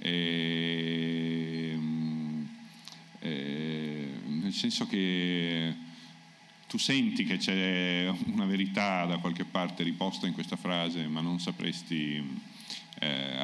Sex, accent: male, native